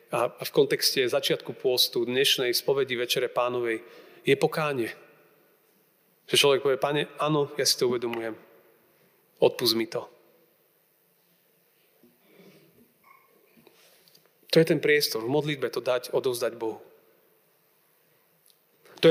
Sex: male